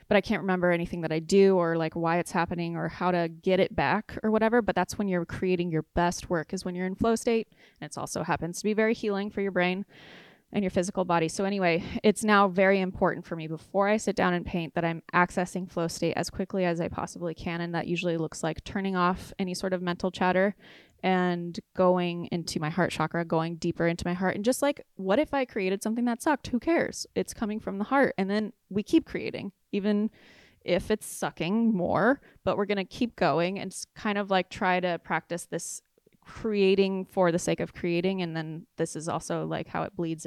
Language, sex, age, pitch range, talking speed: English, female, 20-39, 170-200 Hz, 230 wpm